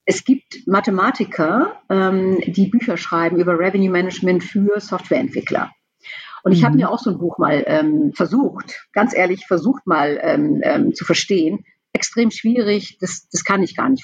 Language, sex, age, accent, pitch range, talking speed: German, female, 50-69, German, 185-255 Hz, 165 wpm